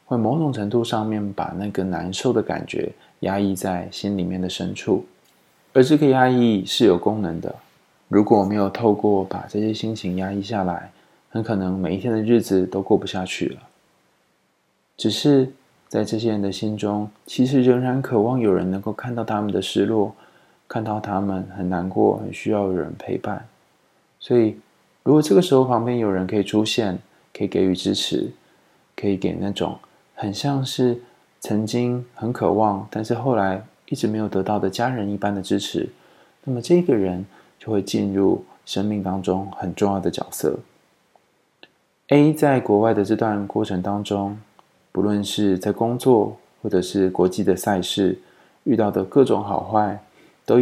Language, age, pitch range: Chinese, 20-39, 95-115 Hz